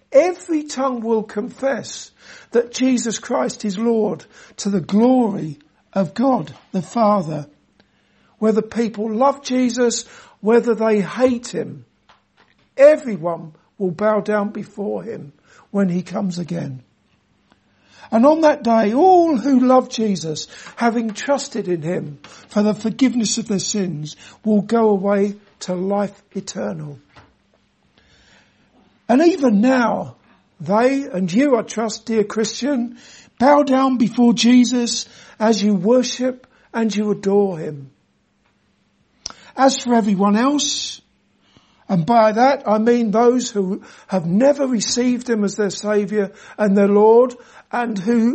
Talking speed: 125 wpm